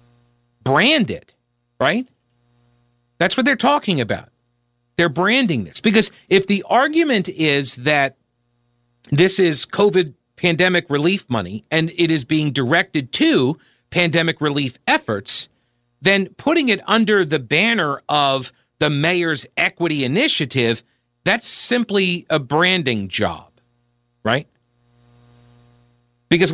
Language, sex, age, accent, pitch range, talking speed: English, male, 40-59, American, 120-180 Hz, 110 wpm